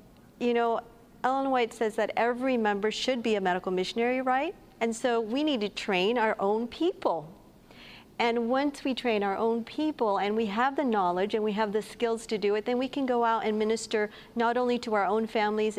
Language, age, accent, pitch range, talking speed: English, 50-69, American, 205-245 Hz, 215 wpm